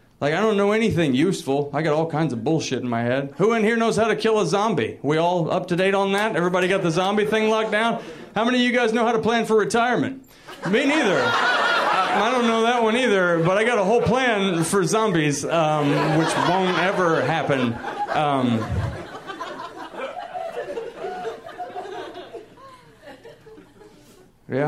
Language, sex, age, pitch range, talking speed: English, male, 30-49, 125-210 Hz, 175 wpm